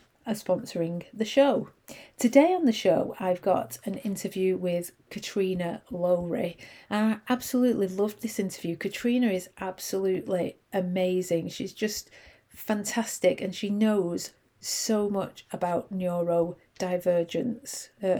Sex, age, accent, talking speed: female, 40-59, British, 115 wpm